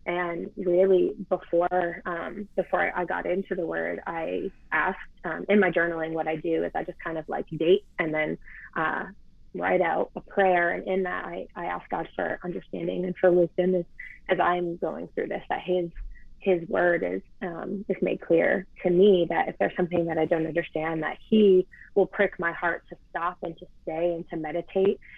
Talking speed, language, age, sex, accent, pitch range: 200 wpm, English, 20-39, female, American, 170-195 Hz